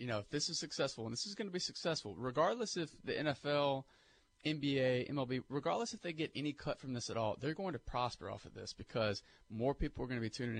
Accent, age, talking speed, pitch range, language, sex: American, 30-49, 250 wpm, 110-135 Hz, English, male